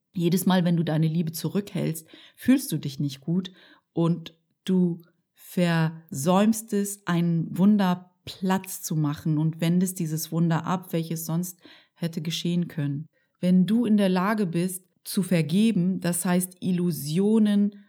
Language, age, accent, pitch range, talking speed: German, 30-49, German, 155-180 Hz, 140 wpm